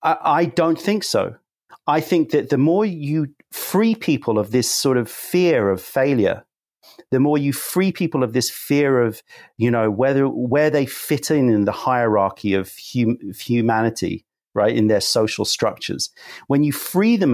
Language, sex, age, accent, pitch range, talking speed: English, male, 40-59, British, 110-145 Hz, 175 wpm